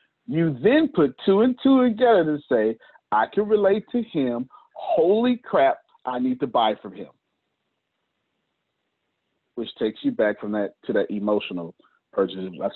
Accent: American